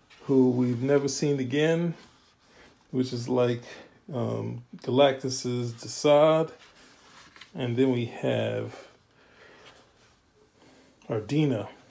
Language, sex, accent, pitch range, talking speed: English, male, American, 125-160 Hz, 80 wpm